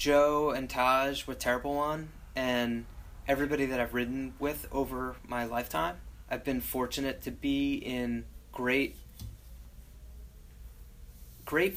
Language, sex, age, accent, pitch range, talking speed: English, male, 20-39, American, 120-150 Hz, 115 wpm